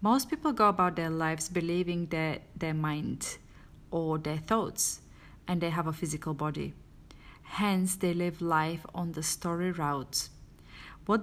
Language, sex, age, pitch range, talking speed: English, female, 30-49, 155-190 Hz, 150 wpm